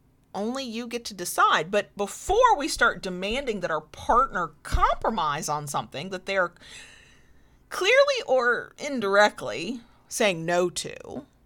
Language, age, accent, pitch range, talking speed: English, 40-59, American, 185-285 Hz, 125 wpm